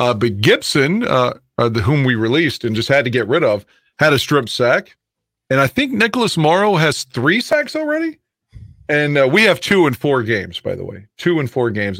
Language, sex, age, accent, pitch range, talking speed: English, male, 40-59, American, 125-165 Hz, 220 wpm